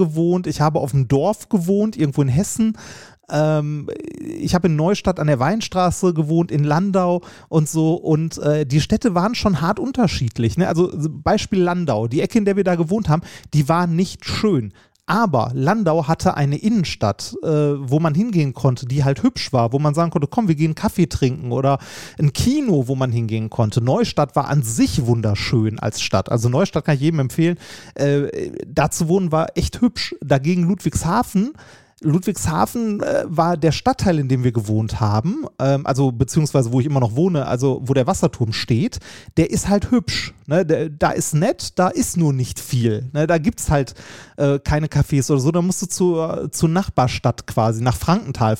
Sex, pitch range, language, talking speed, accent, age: male, 135-185 Hz, German, 180 wpm, German, 30-49